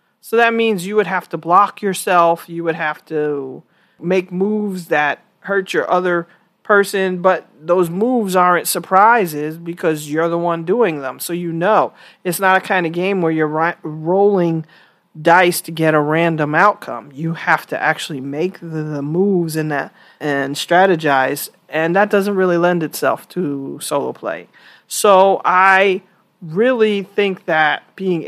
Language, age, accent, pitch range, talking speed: English, 40-59, American, 165-205 Hz, 160 wpm